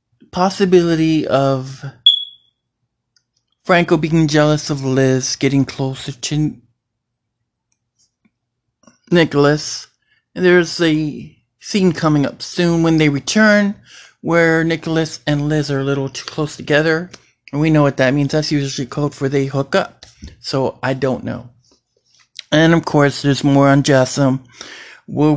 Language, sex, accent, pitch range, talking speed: English, male, American, 135-165 Hz, 130 wpm